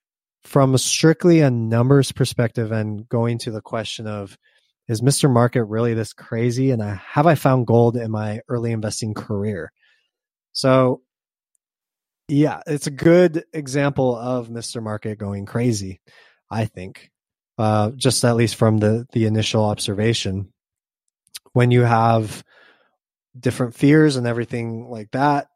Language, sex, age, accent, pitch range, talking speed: English, male, 20-39, American, 110-135 Hz, 140 wpm